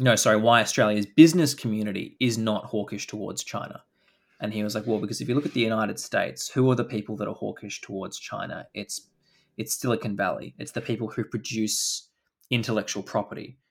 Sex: male